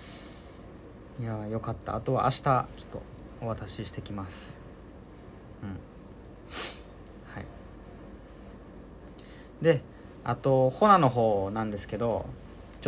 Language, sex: Japanese, male